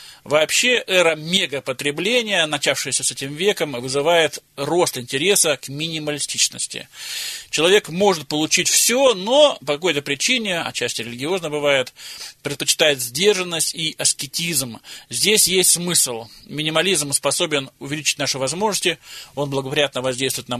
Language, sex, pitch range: Russian, male, 130-170 Hz